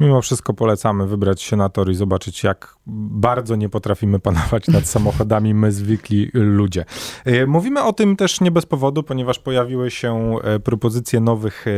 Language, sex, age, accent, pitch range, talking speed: Polish, male, 30-49, native, 105-130 Hz, 160 wpm